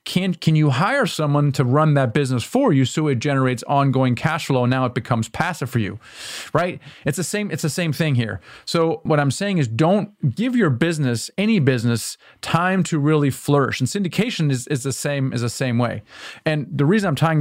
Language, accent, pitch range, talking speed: English, American, 130-170 Hz, 215 wpm